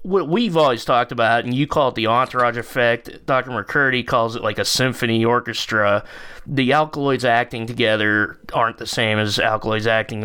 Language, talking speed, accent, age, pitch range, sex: English, 175 wpm, American, 20-39, 115-135 Hz, male